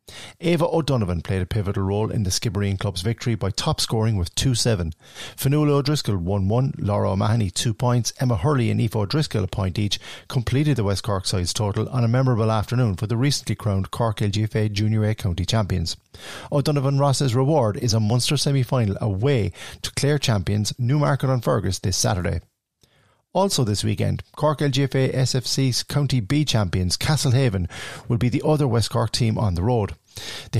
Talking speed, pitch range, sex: 175 wpm, 105-135 Hz, male